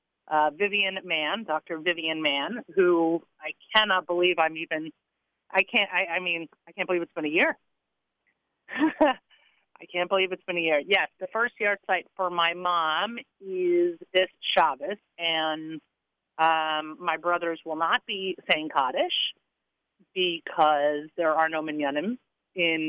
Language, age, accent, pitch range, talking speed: English, 40-59, American, 165-210 Hz, 150 wpm